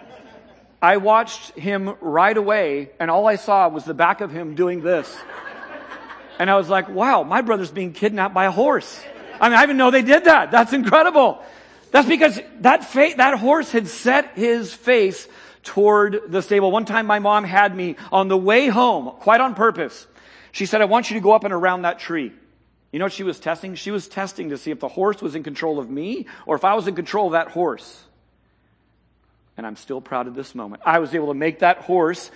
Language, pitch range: English, 150-210 Hz